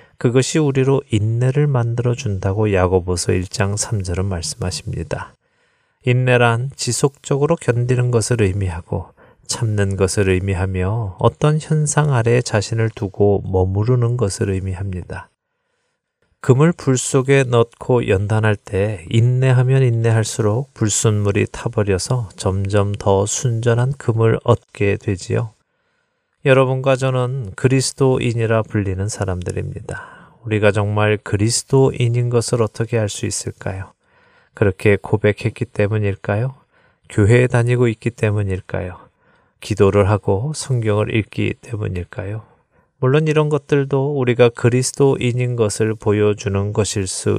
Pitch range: 100-130 Hz